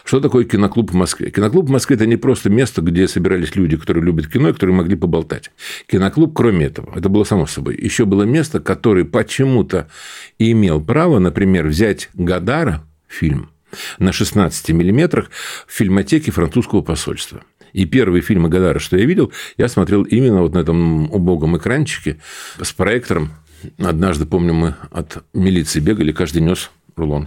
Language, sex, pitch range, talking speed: Russian, male, 90-120 Hz, 165 wpm